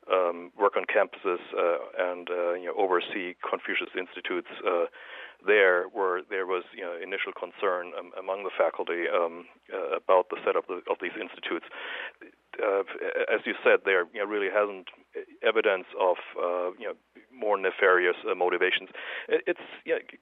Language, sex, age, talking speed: English, male, 60-79, 170 wpm